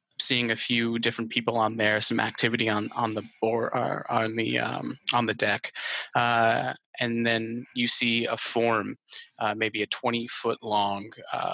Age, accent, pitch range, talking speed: 20-39, American, 110-120 Hz, 170 wpm